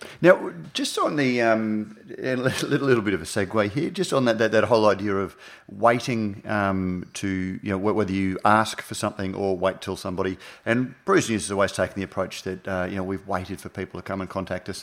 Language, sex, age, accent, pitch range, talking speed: English, male, 30-49, Australian, 95-120 Hz, 220 wpm